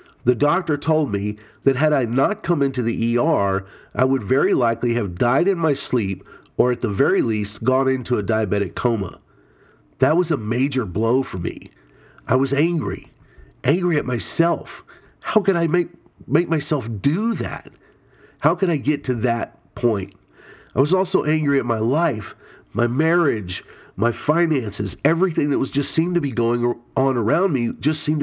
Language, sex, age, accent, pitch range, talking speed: English, male, 40-59, American, 110-150 Hz, 175 wpm